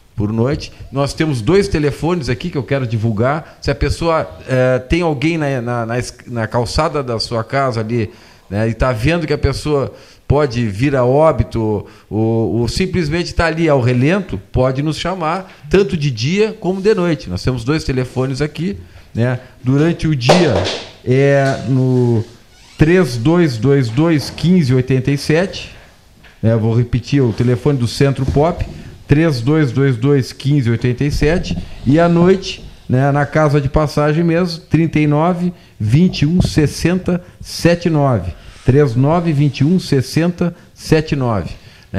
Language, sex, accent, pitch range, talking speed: Portuguese, male, Brazilian, 125-165 Hz, 125 wpm